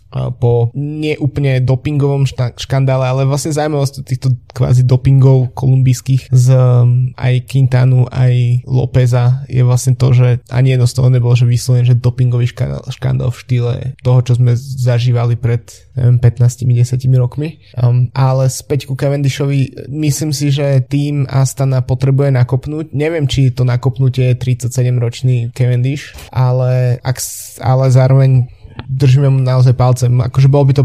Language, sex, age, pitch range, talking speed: Slovak, male, 20-39, 125-130 Hz, 135 wpm